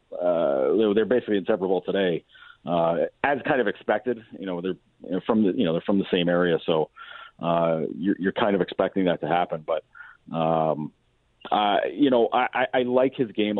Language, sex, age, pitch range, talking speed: English, male, 40-59, 90-125 Hz, 185 wpm